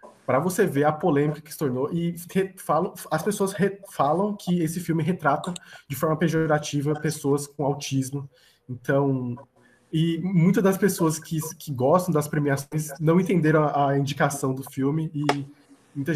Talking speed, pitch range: 165 wpm, 140-175 Hz